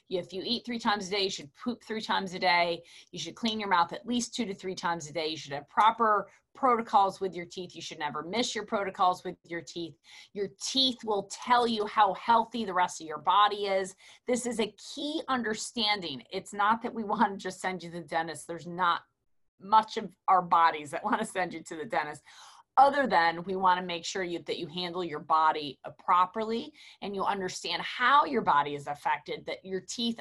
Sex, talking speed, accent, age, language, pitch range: female, 220 wpm, American, 30-49, English, 175-230 Hz